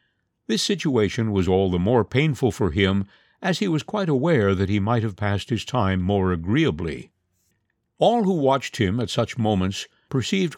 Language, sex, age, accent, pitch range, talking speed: English, male, 60-79, American, 100-145 Hz, 175 wpm